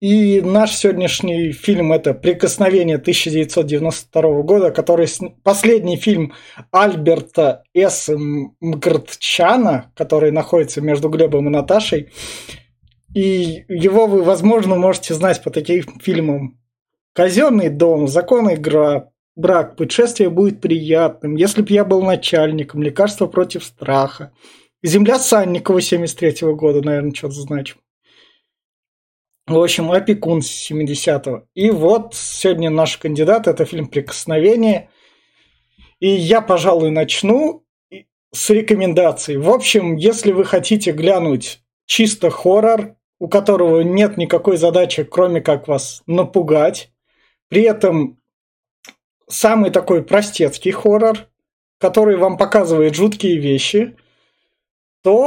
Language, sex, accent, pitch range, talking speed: Russian, male, native, 155-200 Hz, 110 wpm